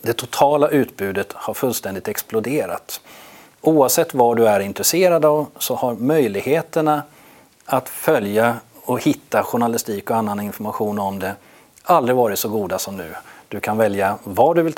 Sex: male